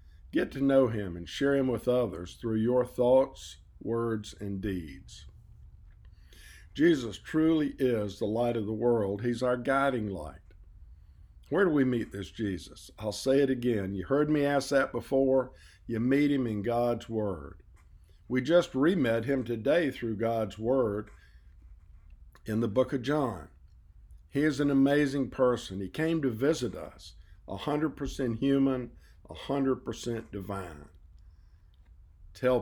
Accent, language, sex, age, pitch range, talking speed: American, English, male, 50-69, 85-125 Hz, 140 wpm